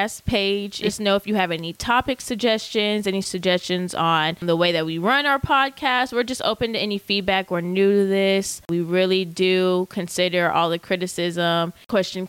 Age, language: 20-39, English